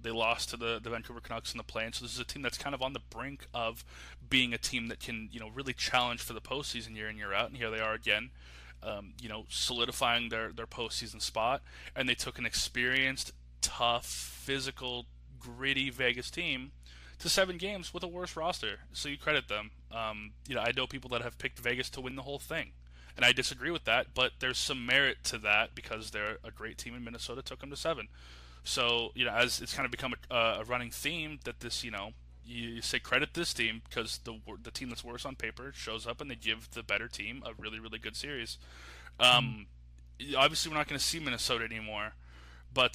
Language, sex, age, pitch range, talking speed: English, male, 20-39, 105-130 Hz, 225 wpm